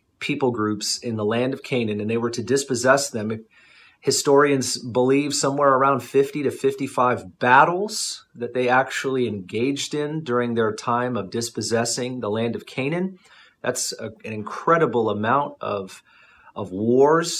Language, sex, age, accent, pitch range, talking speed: English, male, 30-49, American, 115-135 Hz, 150 wpm